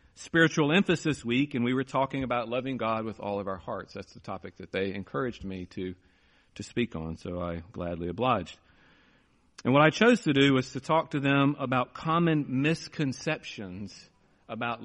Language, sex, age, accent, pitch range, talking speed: English, male, 40-59, American, 95-140 Hz, 180 wpm